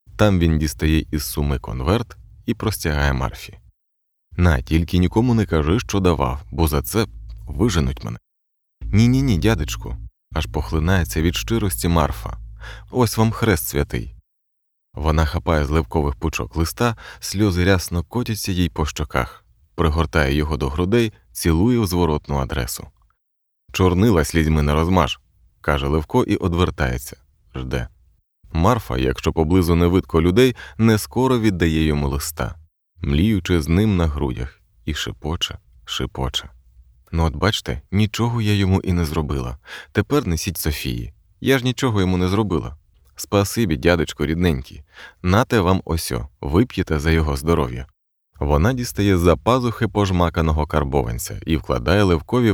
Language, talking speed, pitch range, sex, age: Ukrainian, 135 wpm, 75-100 Hz, male, 30-49